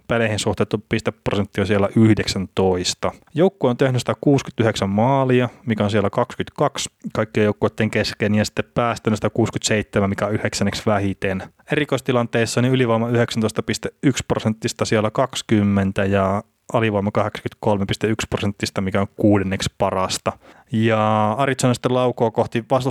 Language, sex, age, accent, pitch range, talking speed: Finnish, male, 20-39, native, 105-120 Hz, 125 wpm